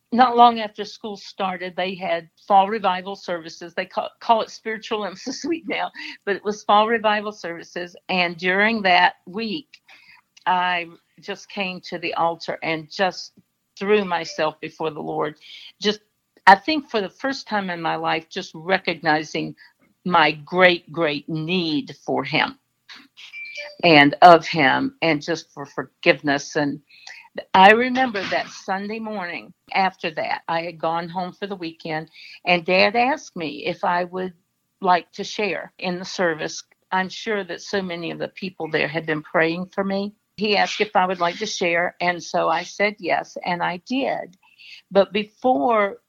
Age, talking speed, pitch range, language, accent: 50-69, 165 wpm, 170-210 Hz, English, American